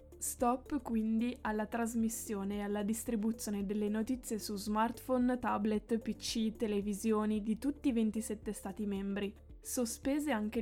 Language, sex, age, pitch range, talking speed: Italian, female, 10-29, 205-235 Hz, 125 wpm